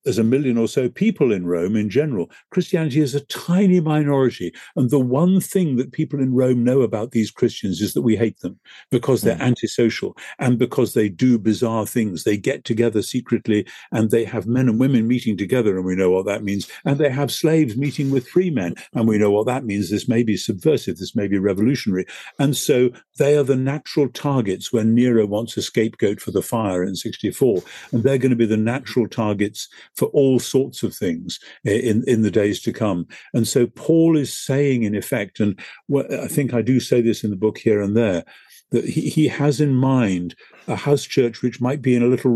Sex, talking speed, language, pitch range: male, 215 wpm, English, 110-130 Hz